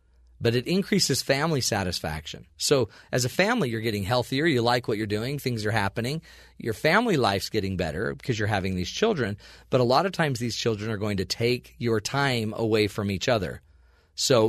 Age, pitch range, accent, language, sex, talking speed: 40-59, 105-145 Hz, American, English, male, 200 wpm